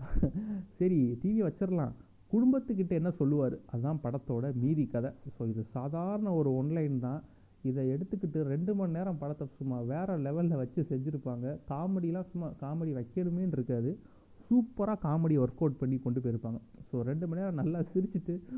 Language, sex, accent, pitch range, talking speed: Tamil, male, native, 125-165 Hz, 140 wpm